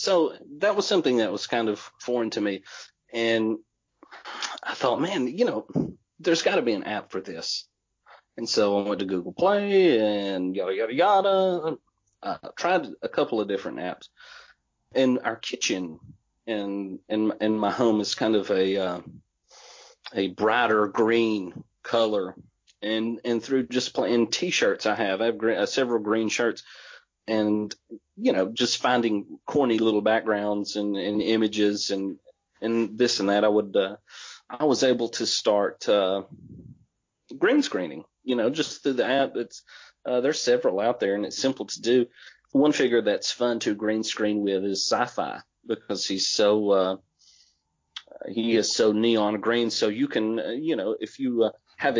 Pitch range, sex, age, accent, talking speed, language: 105-120 Hz, male, 40-59, American, 170 wpm, English